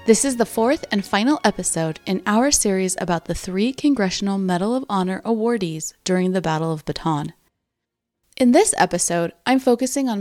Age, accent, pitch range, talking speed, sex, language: 30-49, American, 165-225 Hz, 170 wpm, female, English